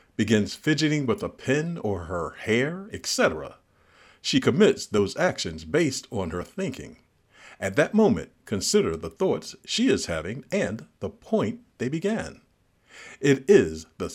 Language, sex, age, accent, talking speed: English, male, 50-69, American, 145 wpm